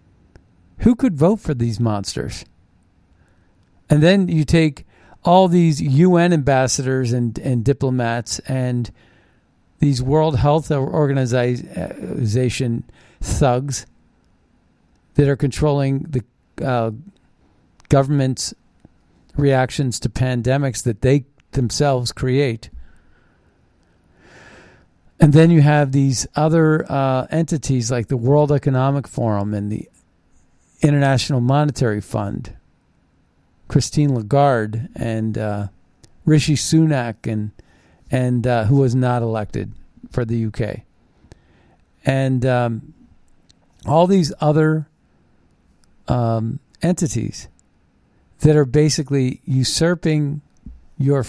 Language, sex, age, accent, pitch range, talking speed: English, male, 50-69, American, 110-145 Hz, 95 wpm